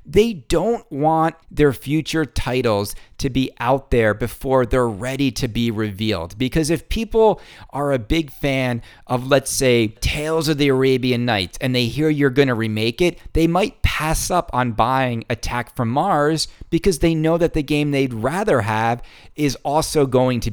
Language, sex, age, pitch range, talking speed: English, male, 40-59, 115-160 Hz, 180 wpm